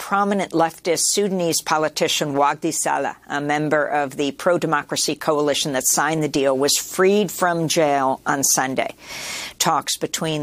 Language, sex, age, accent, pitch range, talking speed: English, female, 50-69, American, 145-175 Hz, 140 wpm